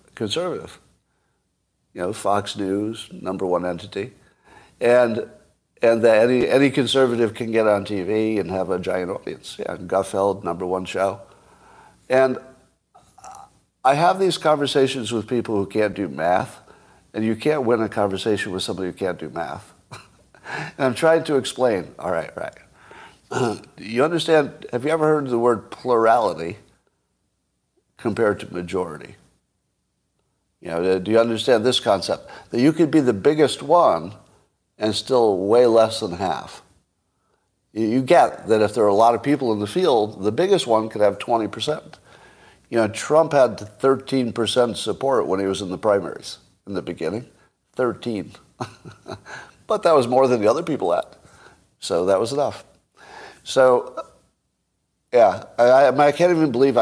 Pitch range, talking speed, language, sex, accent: 100-135 Hz, 155 wpm, English, male, American